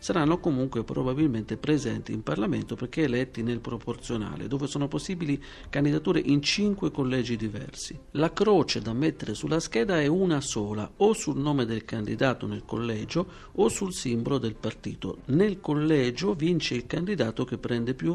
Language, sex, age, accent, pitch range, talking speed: Italian, male, 50-69, native, 115-155 Hz, 155 wpm